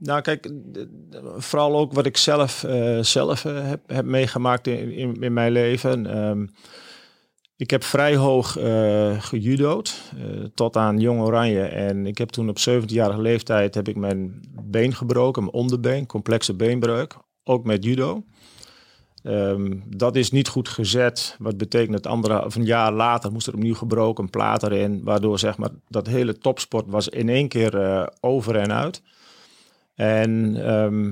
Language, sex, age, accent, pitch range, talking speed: Dutch, male, 40-59, Dutch, 110-130 Hz, 160 wpm